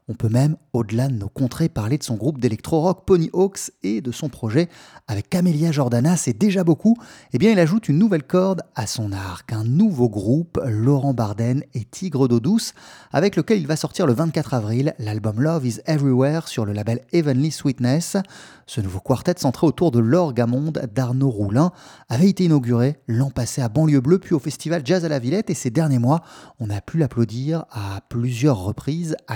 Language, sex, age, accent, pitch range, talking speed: French, male, 30-49, French, 120-165 Hz, 205 wpm